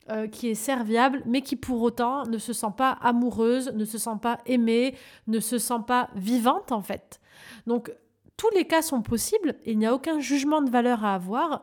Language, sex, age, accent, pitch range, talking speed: French, female, 30-49, French, 210-260 Hz, 210 wpm